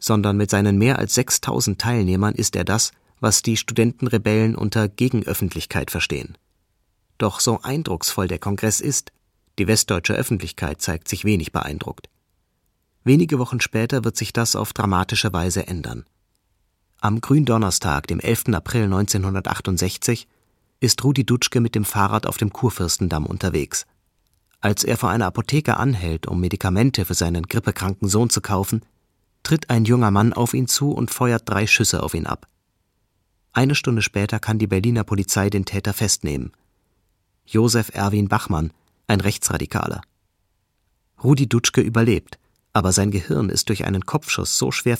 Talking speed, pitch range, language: 145 wpm, 95-115 Hz, German